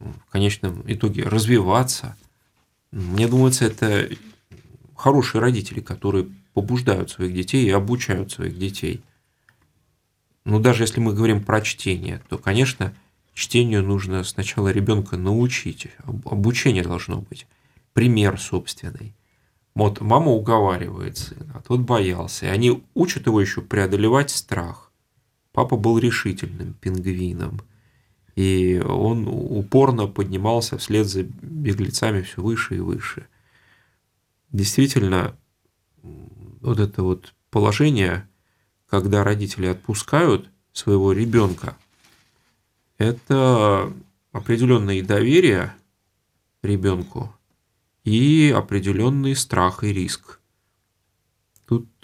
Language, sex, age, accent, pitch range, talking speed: Russian, male, 30-49, native, 95-120 Hz, 100 wpm